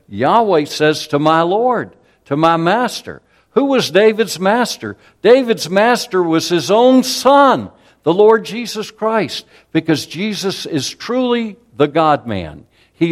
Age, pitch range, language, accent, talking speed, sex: 60-79, 115-175 Hz, English, American, 135 wpm, male